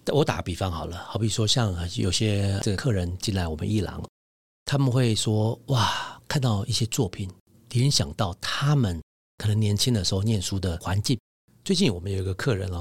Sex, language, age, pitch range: male, Chinese, 50-69, 95-125 Hz